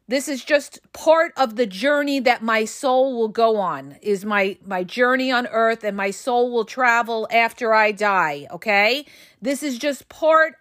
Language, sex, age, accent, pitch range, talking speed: English, female, 40-59, American, 235-305 Hz, 180 wpm